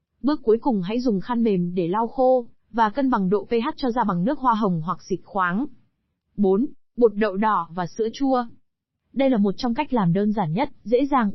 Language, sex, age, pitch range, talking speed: Vietnamese, female, 20-39, 200-250 Hz, 220 wpm